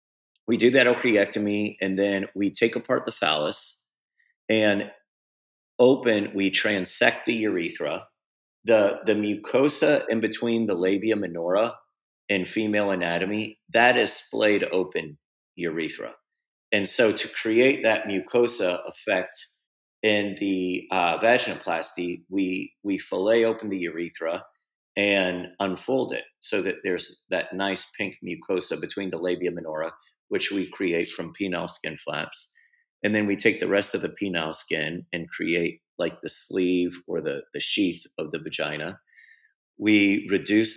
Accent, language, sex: American, English, male